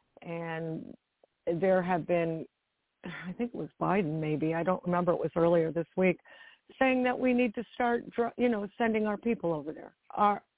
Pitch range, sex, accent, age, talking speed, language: 175-215 Hz, female, American, 50-69, 180 wpm, English